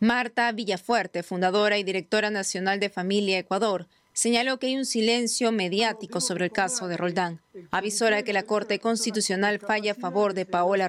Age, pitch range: 30-49, 180-230 Hz